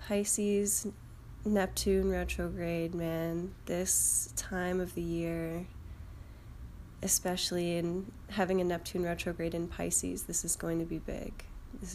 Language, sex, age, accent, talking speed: English, female, 10-29, American, 120 wpm